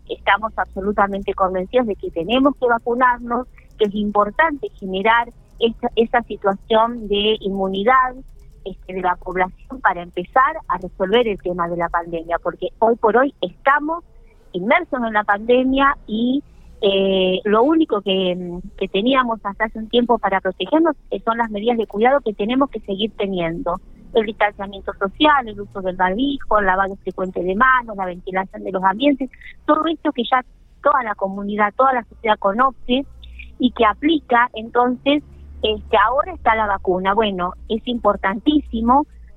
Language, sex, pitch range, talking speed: Spanish, female, 195-260 Hz, 150 wpm